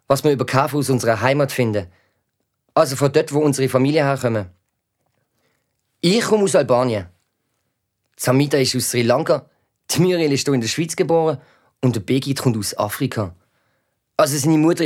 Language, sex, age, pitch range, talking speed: German, male, 20-39, 120-160 Hz, 165 wpm